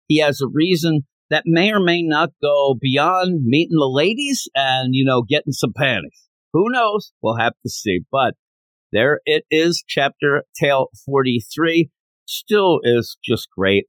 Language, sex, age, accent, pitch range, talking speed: English, male, 50-69, American, 115-170 Hz, 160 wpm